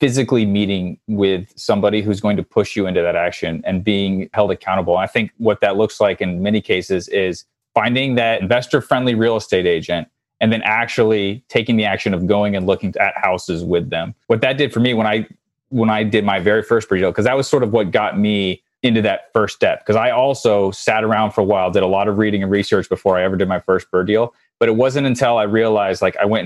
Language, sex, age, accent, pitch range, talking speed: English, male, 30-49, American, 105-120 Hz, 240 wpm